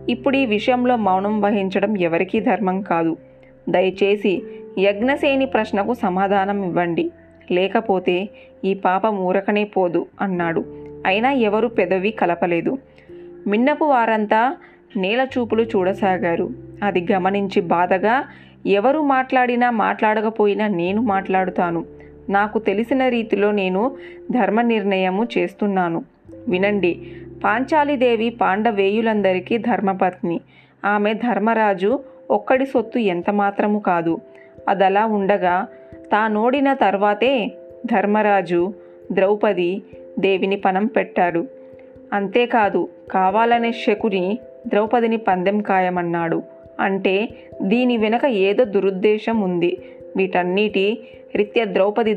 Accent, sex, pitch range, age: native, female, 185-230 Hz, 20-39